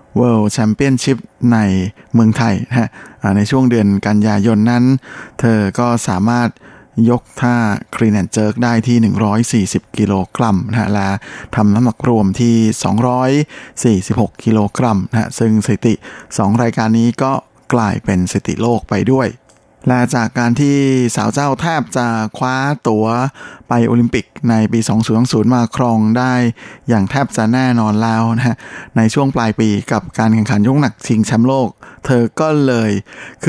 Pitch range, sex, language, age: 110-125 Hz, male, Thai, 20-39